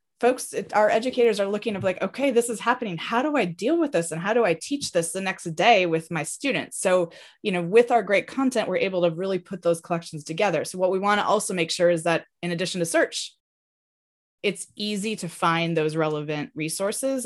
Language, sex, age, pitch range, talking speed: English, female, 20-39, 165-210 Hz, 230 wpm